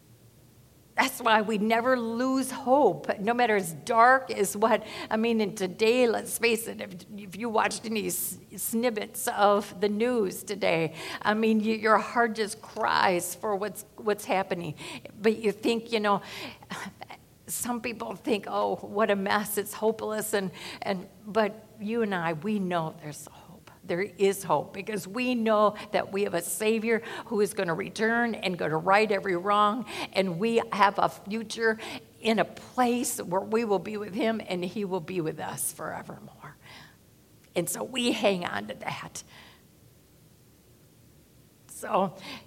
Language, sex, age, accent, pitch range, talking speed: English, female, 50-69, American, 195-230 Hz, 160 wpm